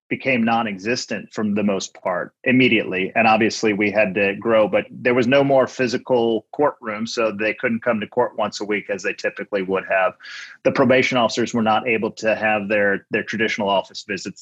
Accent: American